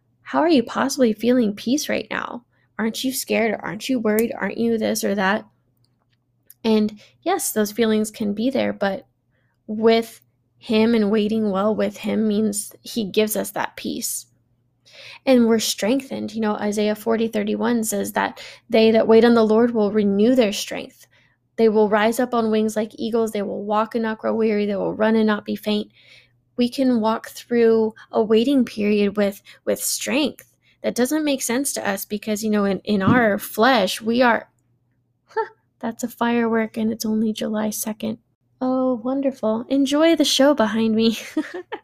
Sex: female